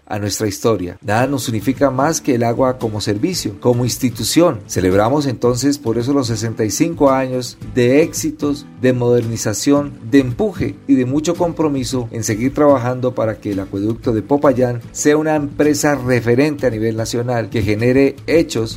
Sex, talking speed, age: male, 160 wpm, 40-59